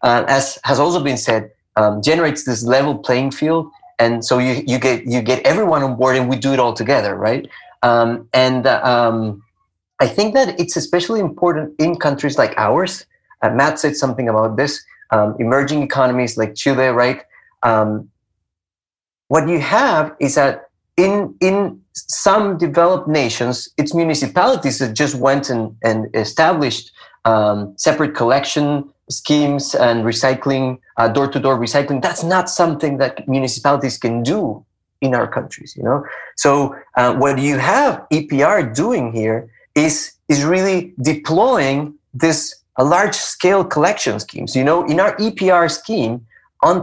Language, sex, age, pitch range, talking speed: English, male, 30-49, 120-155 Hz, 155 wpm